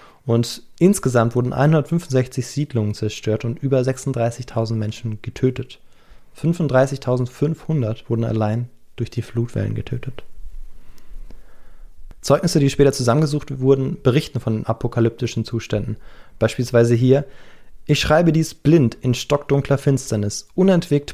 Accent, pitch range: German, 115-135 Hz